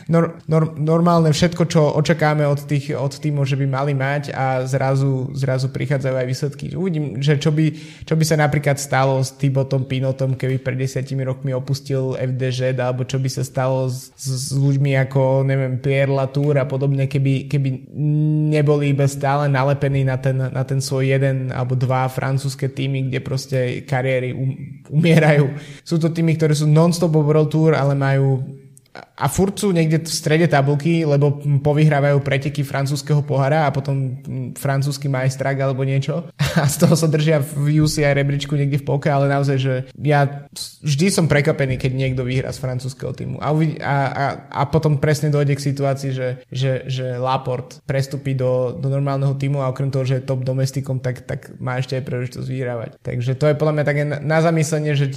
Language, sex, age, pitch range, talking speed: Slovak, male, 20-39, 130-150 Hz, 180 wpm